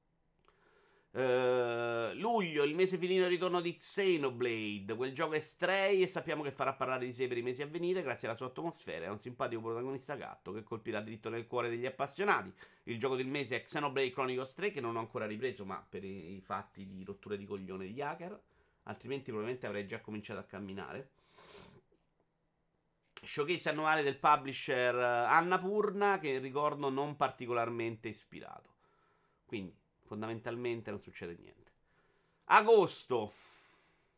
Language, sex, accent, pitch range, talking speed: Italian, male, native, 115-175 Hz, 155 wpm